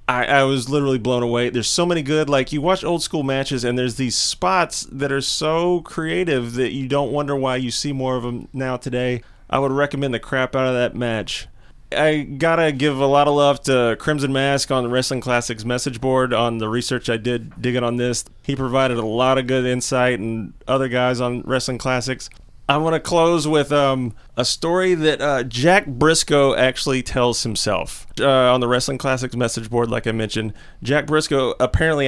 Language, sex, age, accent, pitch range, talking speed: English, male, 30-49, American, 120-140 Hz, 205 wpm